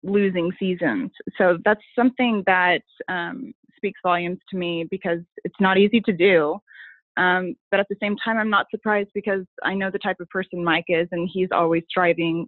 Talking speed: 190 wpm